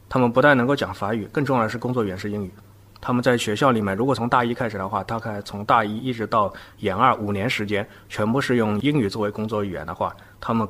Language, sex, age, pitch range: Chinese, male, 20-39, 100-115 Hz